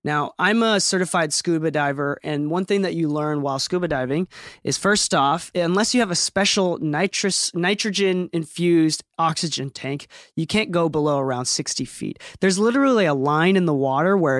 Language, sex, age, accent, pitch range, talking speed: English, male, 20-39, American, 155-200 Hz, 175 wpm